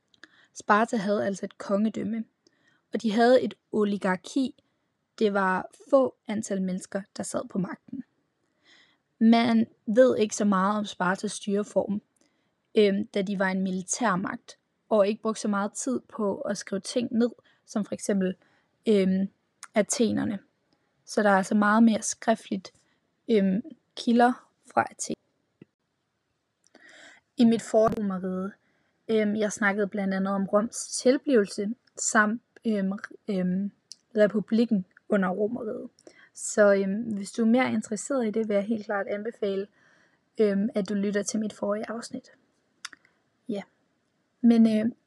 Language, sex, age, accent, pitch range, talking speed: Danish, female, 20-39, native, 200-235 Hz, 135 wpm